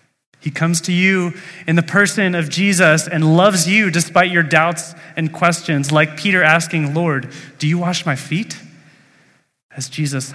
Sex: male